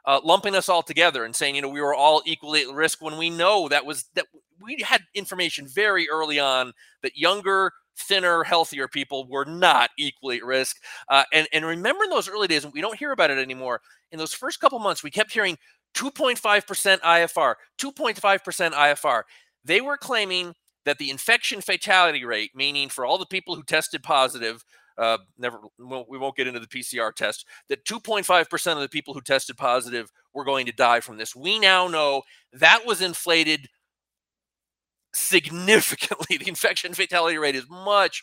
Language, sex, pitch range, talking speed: English, male, 140-190 Hz, 185 wpm